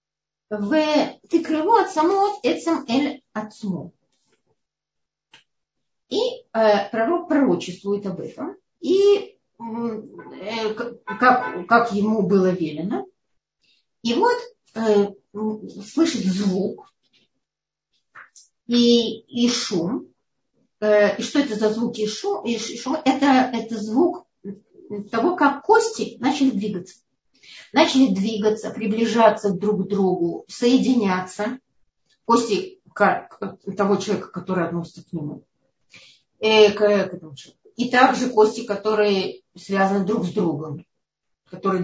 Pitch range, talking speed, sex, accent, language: 200-265 Hz, 95 wpm, female, native, Russian